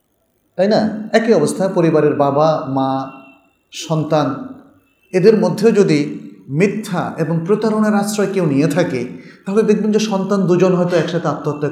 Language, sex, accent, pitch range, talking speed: Bengali, male, native, 145-220 Hz, 135 wpm